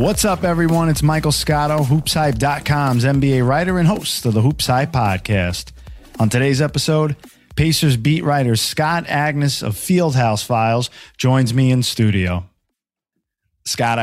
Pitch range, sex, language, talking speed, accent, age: 100-125 Hz, male, English, 135 wpm, American, 20-39